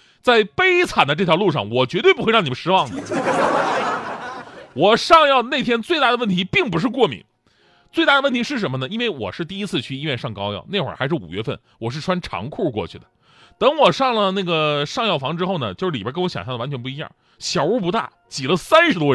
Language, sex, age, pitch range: Chinese, male, 30-49, 135-220 Hz